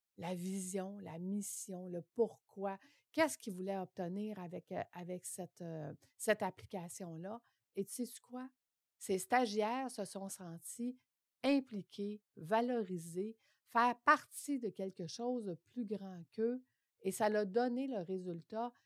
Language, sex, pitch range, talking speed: French, female, 180-240 Hz, 135 wpm